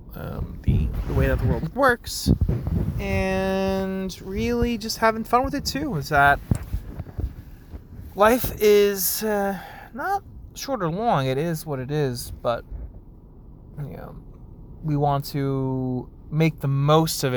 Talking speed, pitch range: 140 wpm, 125-160 Hz